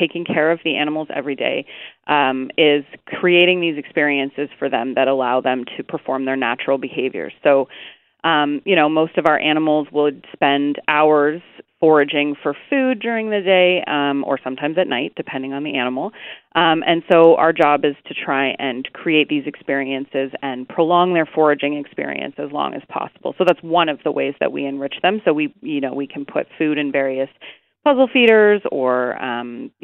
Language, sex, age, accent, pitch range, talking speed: English, female, 30-49, American, 135-170 Hz, 185 wpm